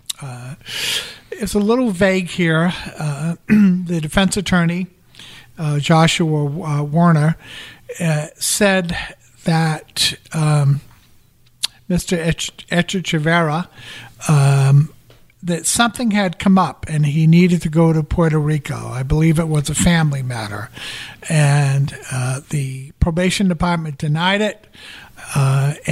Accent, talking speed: American, 120 wpm